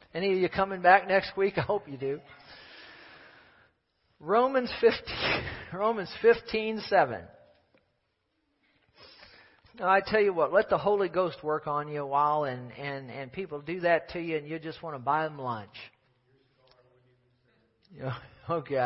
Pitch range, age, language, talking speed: 140-205 Hz, 50-69, English, 145 wpm